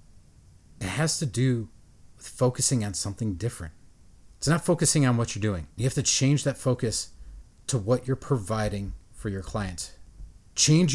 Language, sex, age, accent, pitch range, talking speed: English, male, 40-59, American, 95-135 Hz, 165 wpm